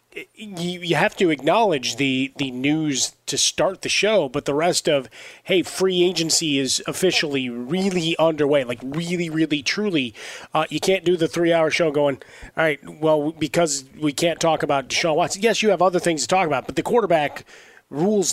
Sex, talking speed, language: male, 185 wpm, English